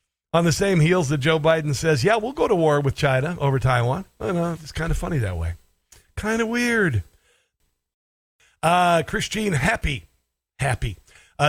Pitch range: 140-180 Hz